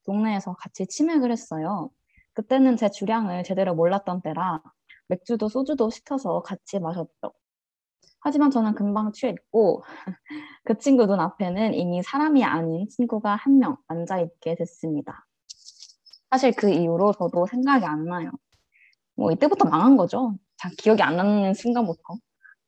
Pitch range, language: 180-250 Hz, Korean